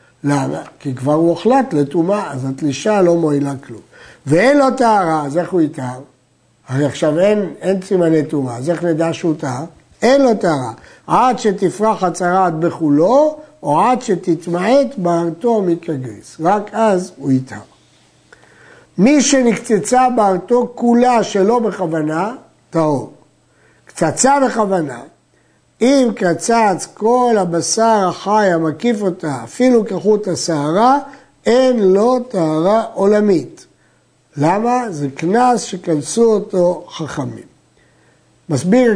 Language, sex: Hebrew, male